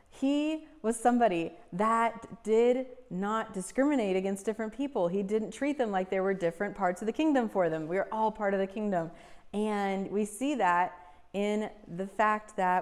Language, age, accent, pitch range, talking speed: English, 30-49, American, 180-225 Hz, 185 wpm